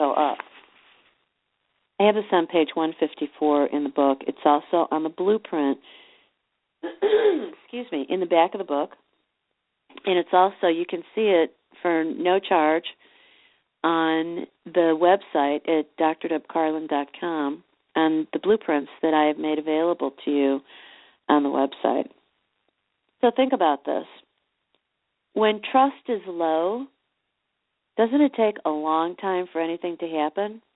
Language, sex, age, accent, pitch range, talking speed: English, female, 40-59, American, 160-210 Hz, 135 wpm